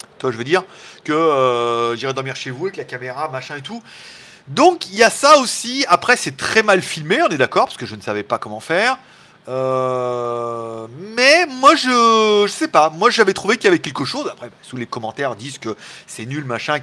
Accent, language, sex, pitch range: French, French, male, 130-190 Hz